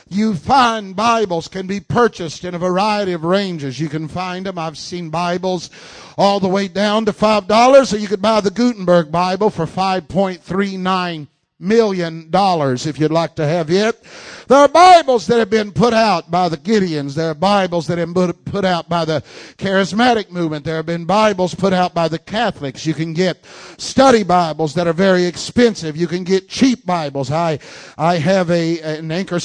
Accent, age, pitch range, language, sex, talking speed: American, 50-69, 170-220 Hz, English, male, 185 wpm